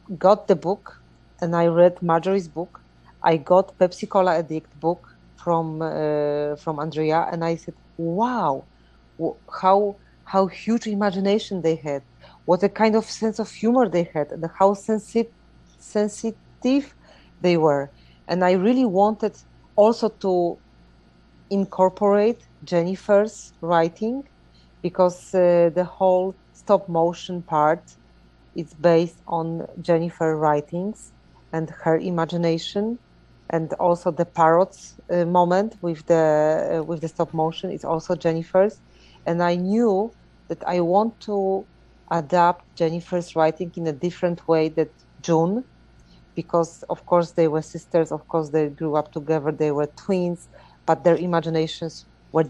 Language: English